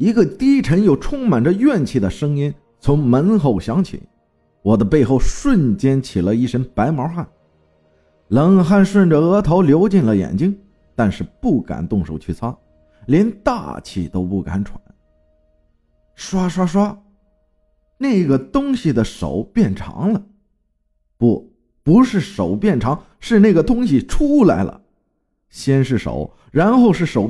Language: Chinese